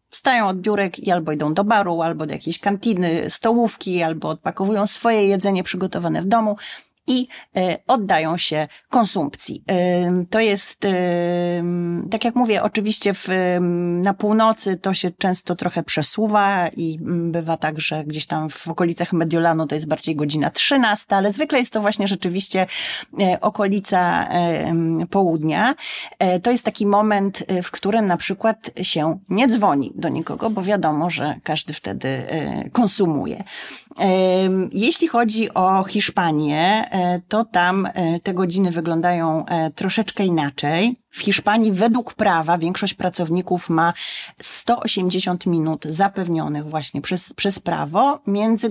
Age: 30-49